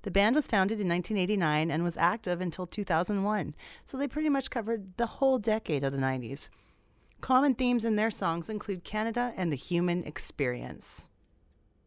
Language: English